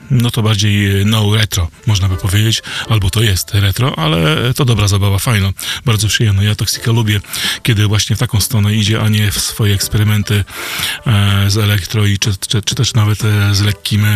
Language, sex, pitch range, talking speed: Polish, male, 100-115 Hz, 180 wpm